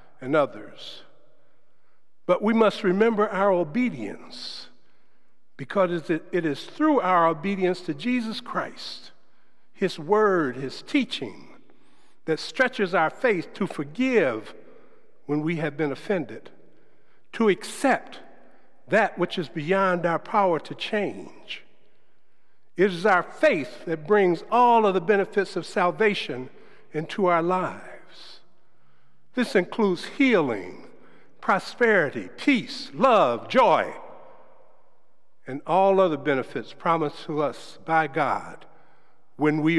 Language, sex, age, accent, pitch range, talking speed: English, male, 60-79, American, 155-210 Hz, 115 wpm